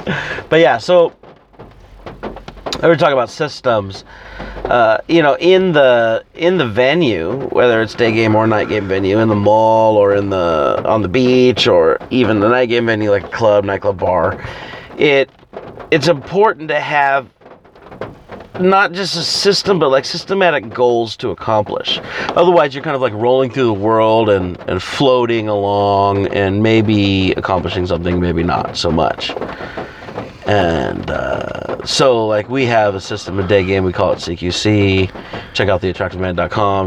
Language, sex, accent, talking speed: English, male, American, 160 wpm